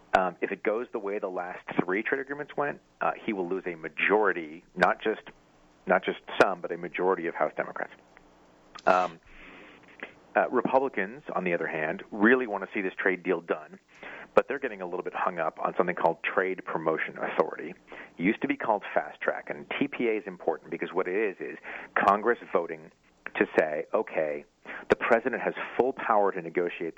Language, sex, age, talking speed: English, male, 40-59, 190 wpm